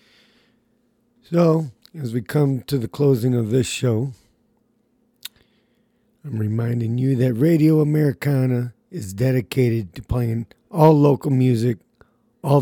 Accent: American